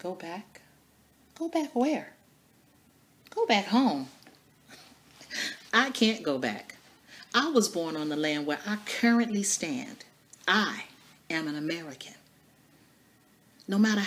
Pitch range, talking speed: 170-240 Hz, 120 wpm